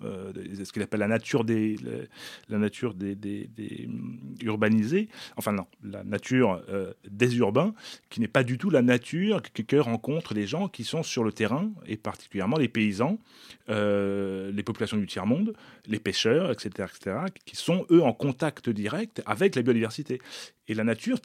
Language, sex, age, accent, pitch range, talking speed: French, male, 30-49, French, 105-150 Hz, 180 wpm